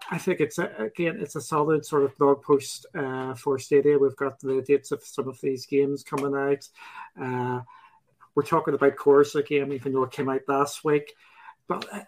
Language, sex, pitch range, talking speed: English, male, 140-170 Hz, 200 wpm